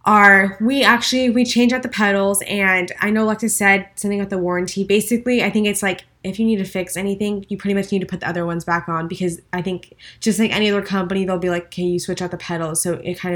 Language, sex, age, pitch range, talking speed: English, female, 20-39, 180-210 Hz, 265 wpm